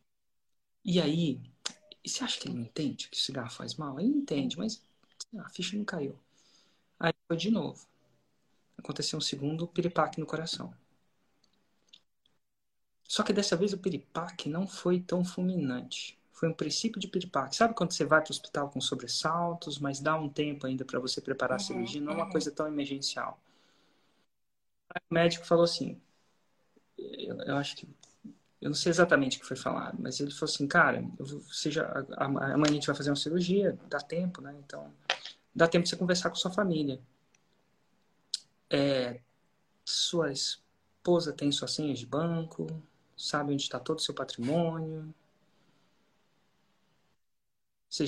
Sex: male